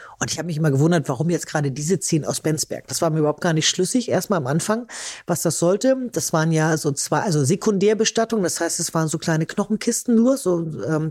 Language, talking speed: German, 230 wpm